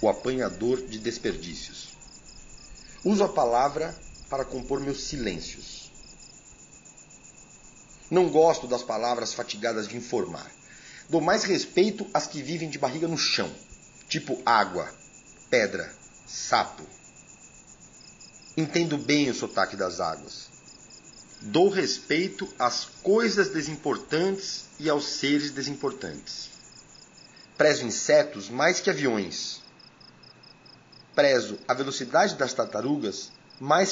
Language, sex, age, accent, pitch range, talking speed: Portuguese, male, 40-59, Brazilian, 120-160 Hz, 105 wpm